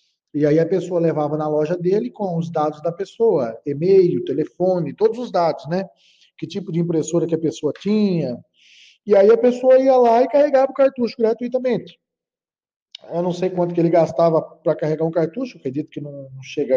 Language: Portuguese